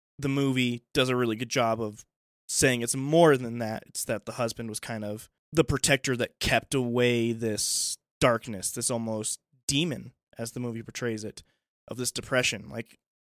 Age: 20-39